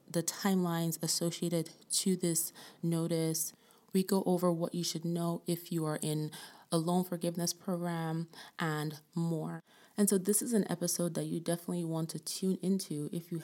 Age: 30-49